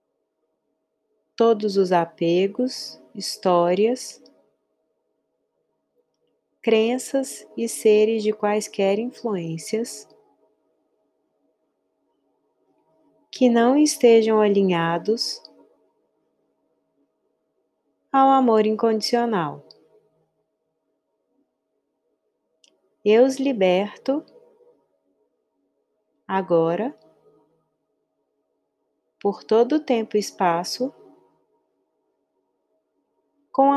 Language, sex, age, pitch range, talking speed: Portuguese, female, 30-49, 180-245 Hz, 50 wpm